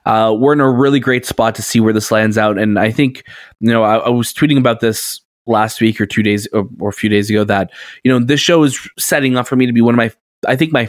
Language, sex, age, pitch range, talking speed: English, male, 20-39, 110-140 Hz, 290 wpm